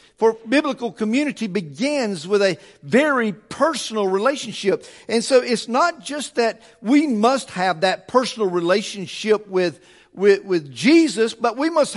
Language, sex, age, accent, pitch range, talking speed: English, male, 50-69, American, 195-255 Hz, 140 wpm